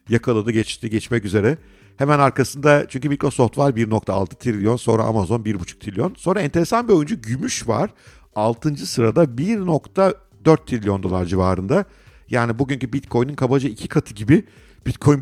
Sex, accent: male, native